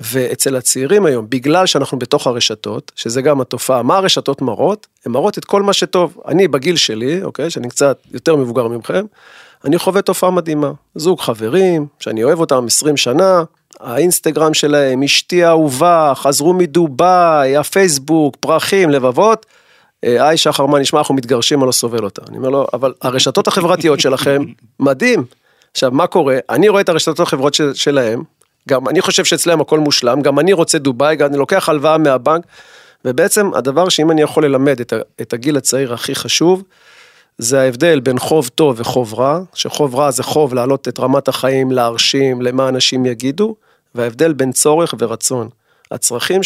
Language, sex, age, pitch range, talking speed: Hebrew, male, 40-59, 130-180 Hz, 150 wpm